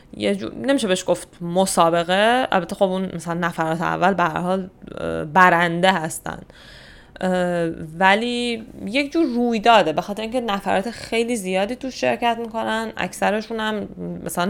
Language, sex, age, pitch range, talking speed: Persian, female, 10-29, 170-230 Hz, 130 wpm